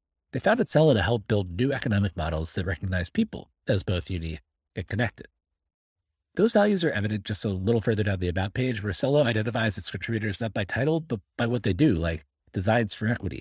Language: English